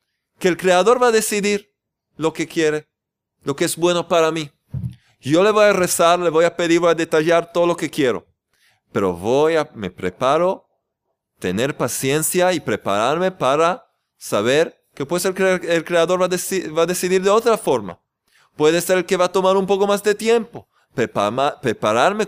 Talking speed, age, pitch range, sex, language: 190 wpm, 30-49, 120-185 Hz, male, Spanish